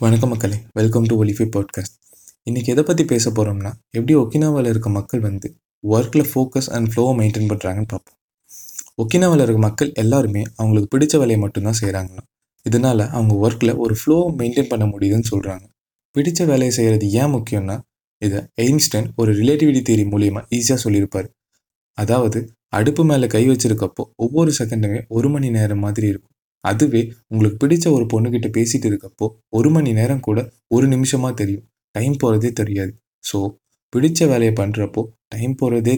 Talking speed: 145 wpm